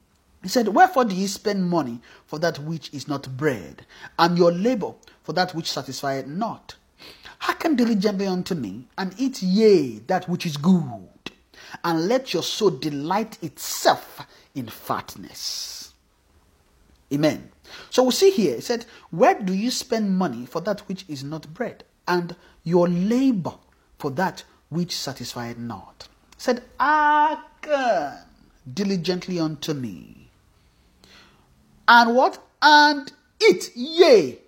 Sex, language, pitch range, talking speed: male, English, 145-225 Hz, 135 wpm